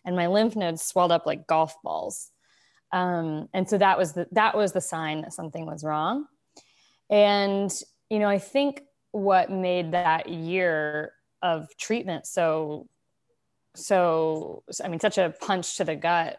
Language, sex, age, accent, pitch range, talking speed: English, female, 20-39, American, 160-190 Hz, 160 wpm